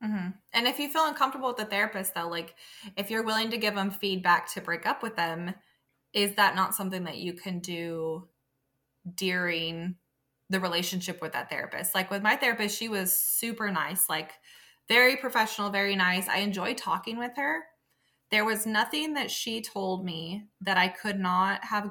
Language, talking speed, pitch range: English, 180 wpm, 175-210 Hz